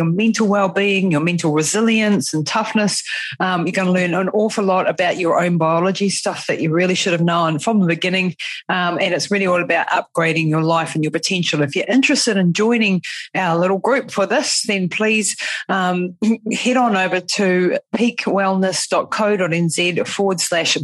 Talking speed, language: 180 wpm, English